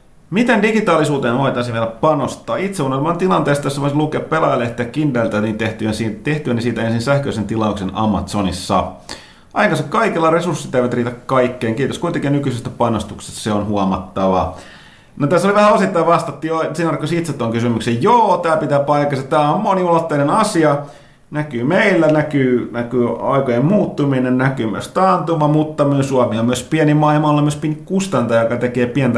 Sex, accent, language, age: male, native, Finnish, 30-49